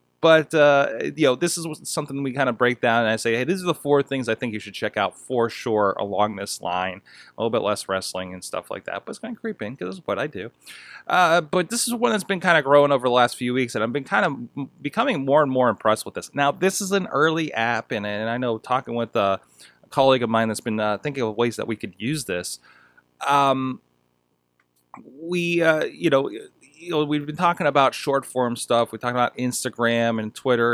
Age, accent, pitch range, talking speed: 30-49, American, 110-145 Hz, 240 wpm